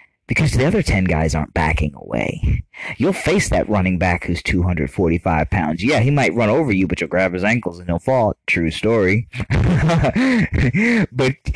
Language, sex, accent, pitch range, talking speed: English, male, American, 85-115 Hz, 170 wpm